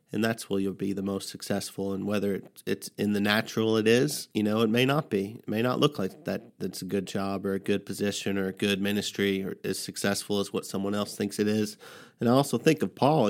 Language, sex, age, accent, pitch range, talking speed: English, male, 30-49, American, 100-110 Hz, 255 wpm